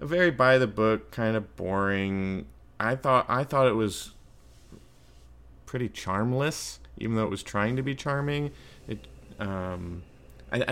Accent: American